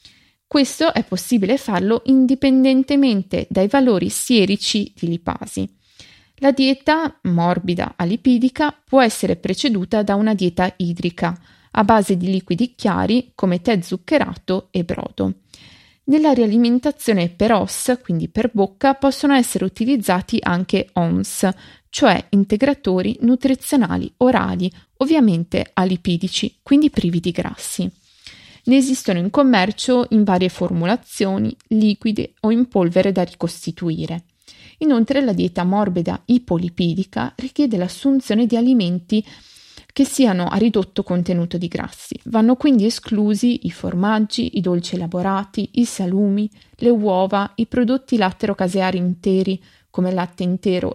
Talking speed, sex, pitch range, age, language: 120 wpm, female, 180-250 Hz, 20-39, Italian